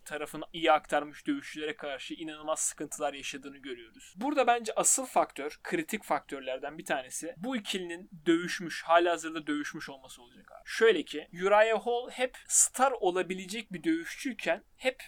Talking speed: 145 wpm